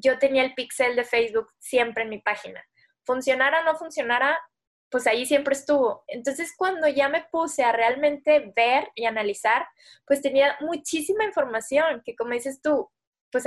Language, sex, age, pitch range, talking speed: Spanish, female, 20-39, 235-285 Hz, 165 wpm